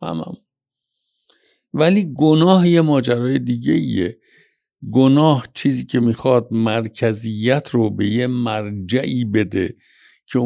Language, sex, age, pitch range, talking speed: Persian, male, 60-79, 100-130 Hz, 100 wpm